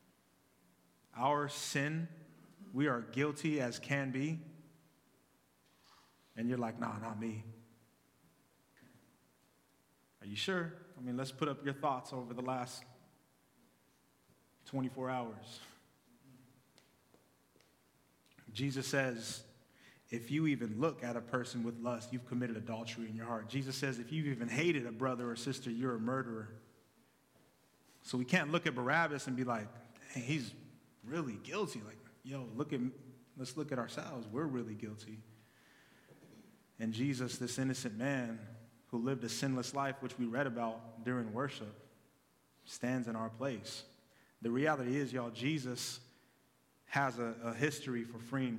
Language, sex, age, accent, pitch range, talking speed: English, male, 30-49, American, 115-140 Hz, 140 wpm